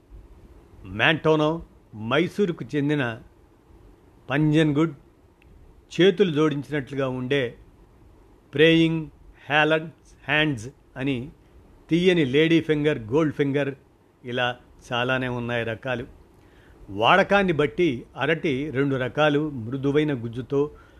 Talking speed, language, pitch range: 80 wpm, Telugu, 115-155 Hz